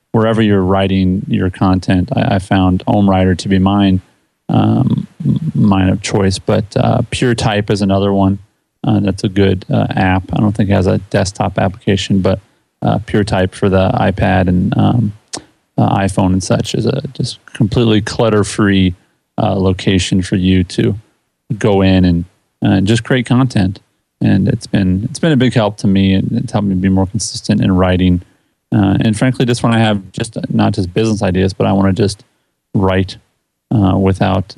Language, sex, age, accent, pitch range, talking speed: English, male, 30-49, American, 95-115 Hz, 180 wpm